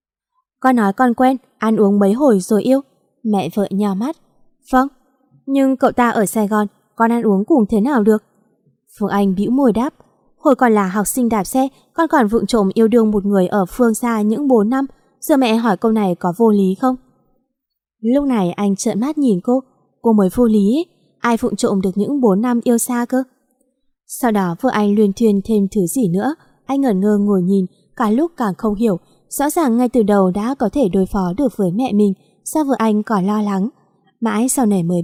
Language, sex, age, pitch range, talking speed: Vietnamese, female, 20-39, 200-255 Hz, 220 wpm